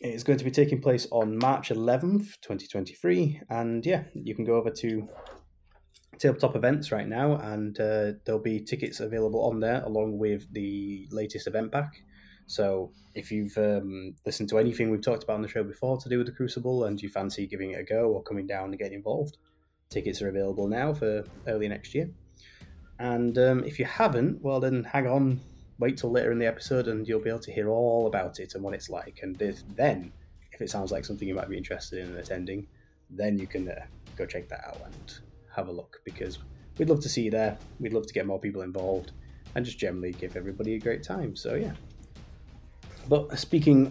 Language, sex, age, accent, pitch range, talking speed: English, male, 20-39, British, 95-125 Hz, 210 wpm